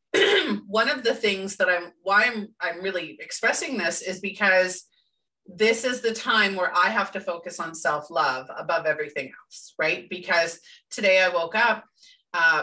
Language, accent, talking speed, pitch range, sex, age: English, American, 165 wpm, 170-215 Hz, female, 30-49